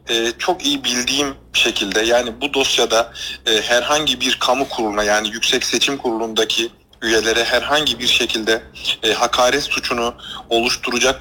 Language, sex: Turkish, male